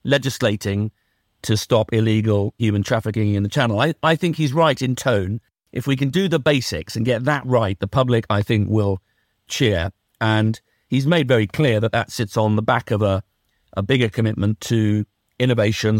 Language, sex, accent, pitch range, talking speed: English, male, British, 105-130 Hz, 190 wpm